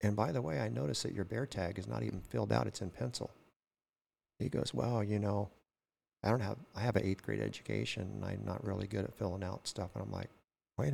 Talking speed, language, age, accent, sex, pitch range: 245 wpm, English, 50-69, American, male, 95-115 Hz